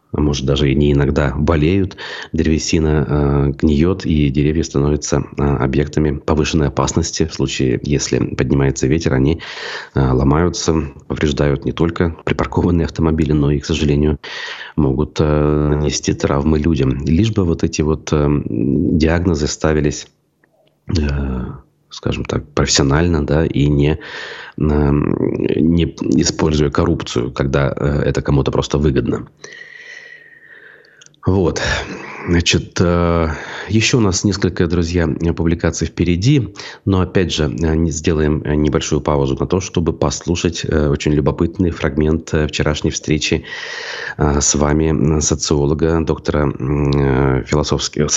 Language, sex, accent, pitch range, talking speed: Russian, male, native, 70-85 Hz, 115 wpm